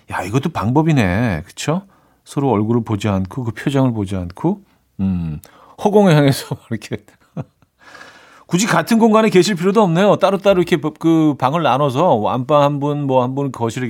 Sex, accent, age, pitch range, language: male, native, 40-59, 110-160 Hz, Korean